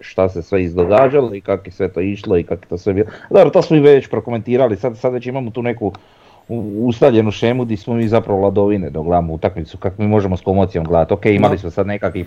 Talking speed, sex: 240 wpm, male